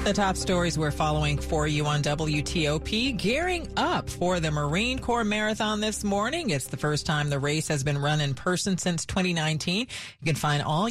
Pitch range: 150-195 Hz